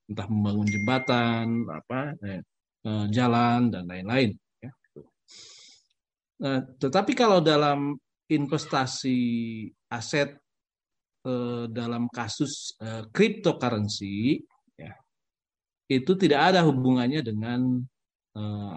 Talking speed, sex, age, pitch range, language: 85 wpm, male, 40-59, 115-145 Hz, Indonesian